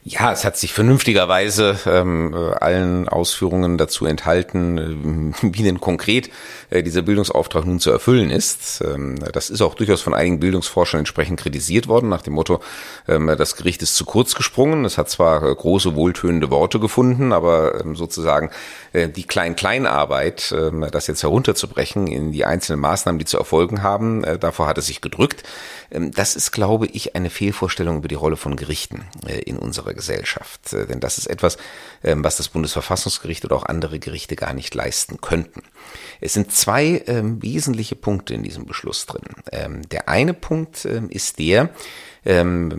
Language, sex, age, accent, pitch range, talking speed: German, male, 40-59, German, 80-105 Hz, 170 wpm